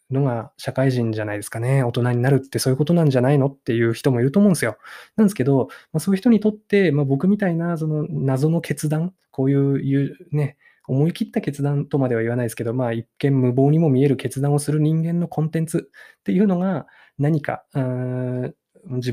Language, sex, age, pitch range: Japanese, male, 20-39, 125-155 Hz